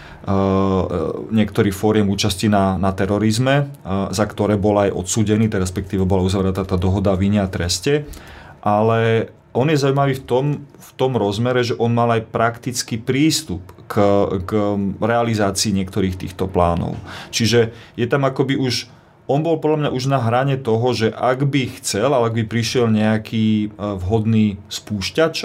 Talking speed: 150 wpm